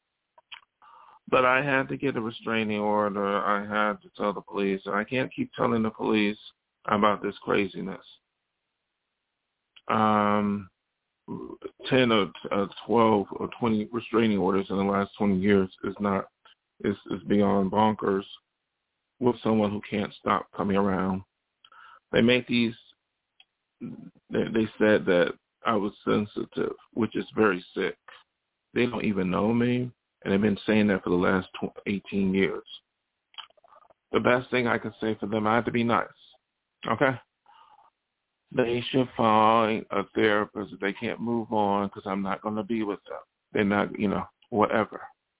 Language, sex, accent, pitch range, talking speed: English, male, American, 100-115 Hz, 155 wpm